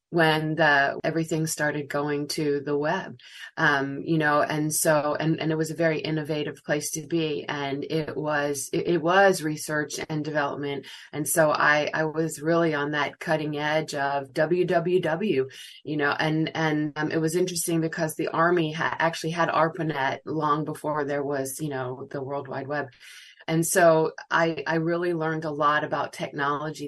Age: 20-39